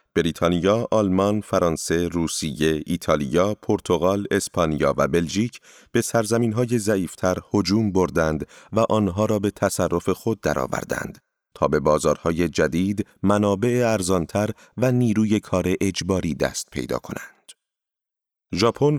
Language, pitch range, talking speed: Persian, 85-115 Hz, 110 wpm